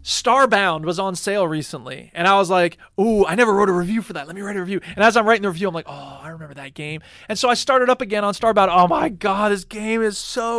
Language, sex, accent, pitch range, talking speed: English, male, American, 155-195 Hz, 285 wpm